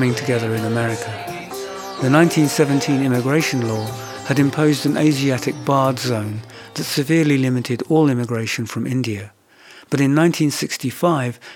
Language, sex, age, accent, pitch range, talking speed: English, male, 60-79, British, 120-150 Hz, 120 wpm